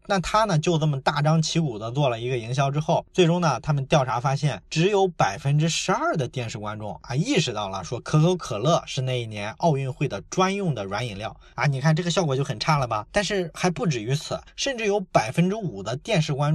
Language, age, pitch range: Chinese, 20-39, 130-175 Hz